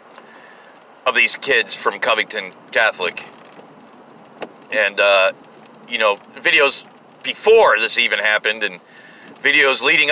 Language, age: English, 40-59